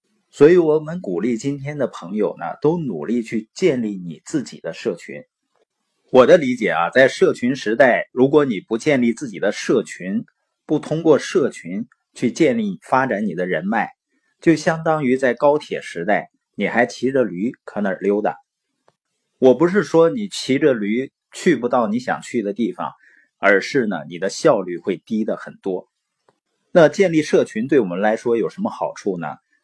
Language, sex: Chinese, male